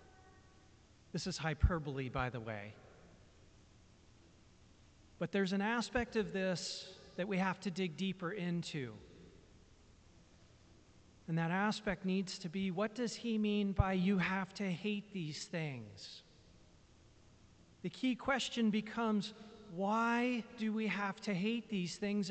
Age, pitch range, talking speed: 40-59, 125-210 Hz, 130 wpm